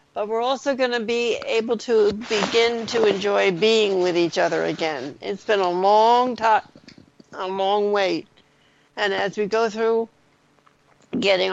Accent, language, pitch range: American, English, 200-235 Hz